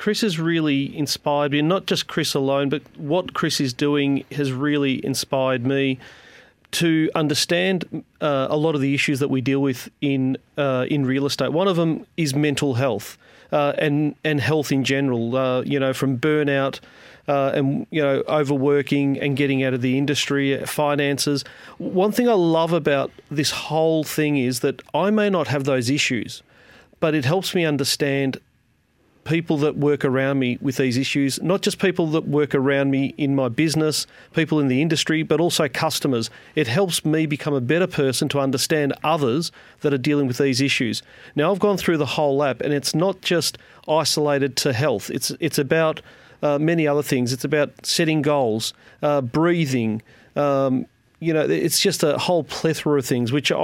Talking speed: 185 wpm